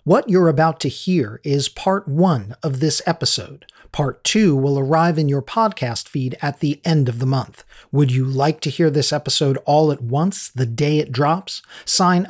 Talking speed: 195 wpm